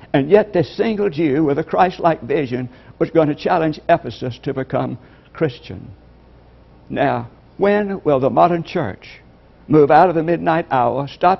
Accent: American